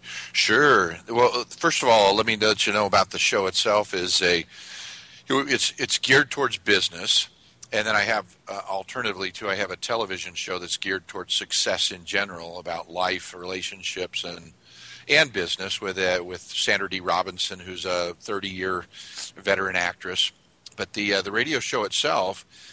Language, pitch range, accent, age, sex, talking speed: English, 95-110 Hz, American, 40-59, male, 160 wpm